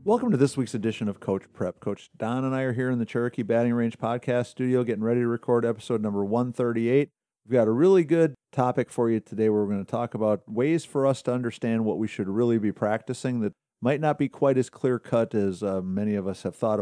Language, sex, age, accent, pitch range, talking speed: English, male, 50-69, American, 105-125 Hz, 245 wpm